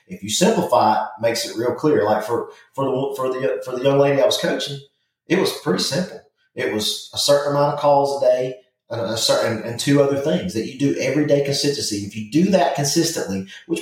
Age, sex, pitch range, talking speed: 30-49, male, 110-140 Hz, 230 wpm